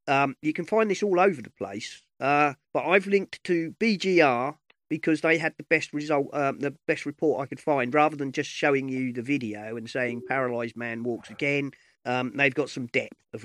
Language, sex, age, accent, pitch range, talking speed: English, male, 40-59, British, 125-155 Hz, 210 wpm